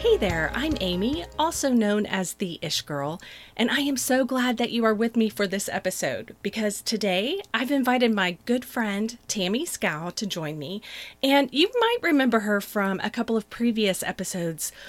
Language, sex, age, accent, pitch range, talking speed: English, female, 30-49, American, 195-245 Hz, 185 wpm